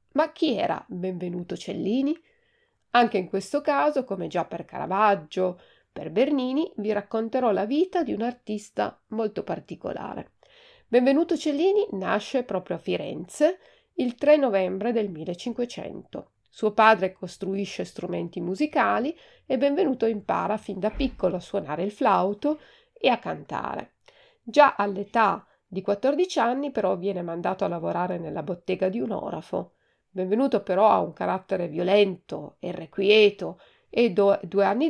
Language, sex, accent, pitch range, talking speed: Italian, female, native, 180-270 Hz, 135 wpm